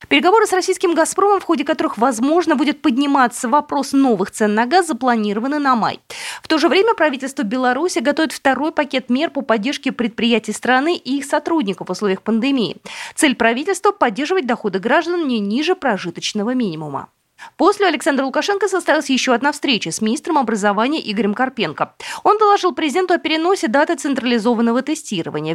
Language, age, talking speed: Russian, 20-39, 155 wpm